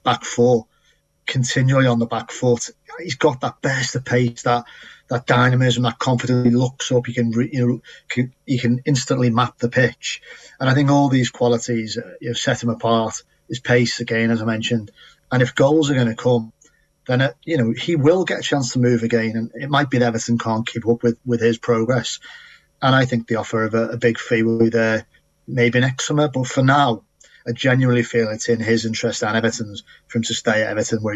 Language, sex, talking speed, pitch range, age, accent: English, male, 225 wpm, 115-125 Hz, 30-49, British